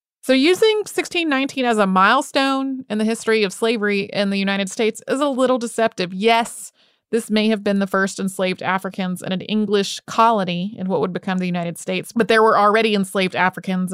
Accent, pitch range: American, 185-215 Hz